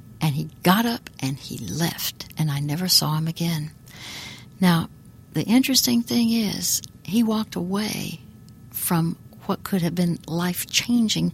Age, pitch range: 60-79, 145-190 Hz